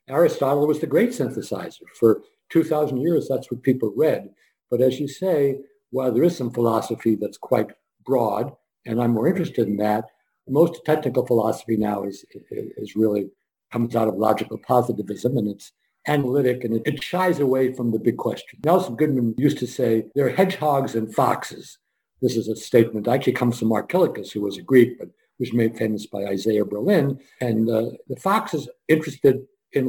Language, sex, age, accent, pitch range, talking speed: English, male, 60-79, American, 115-155 Hz, 185 wpm